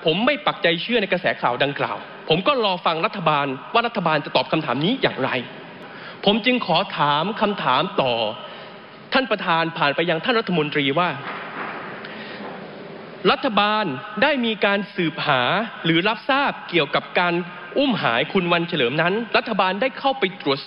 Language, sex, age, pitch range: Thai, male, 20-39, 170-220 Hz